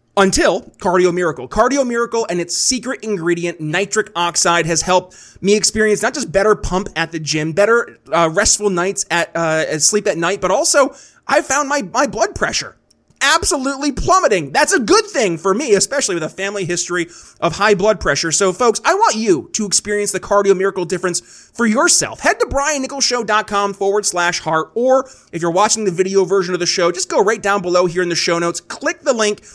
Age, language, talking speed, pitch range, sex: 30-49, English, 200 wpm, 175-235 Hz, male